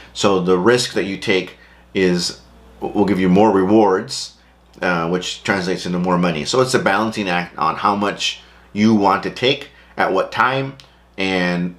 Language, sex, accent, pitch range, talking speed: English, male, American, 90-110 Hz, 175 wpm